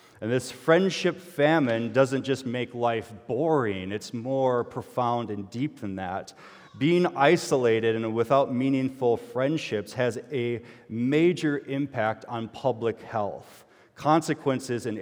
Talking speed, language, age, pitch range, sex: 125 wpm, English, 30-49, 110-140 Hz, male